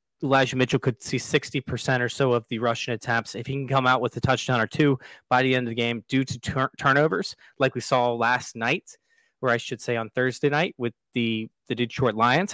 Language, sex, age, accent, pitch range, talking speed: English, male, 30-49, American, 120-145 Hz, 235 wpm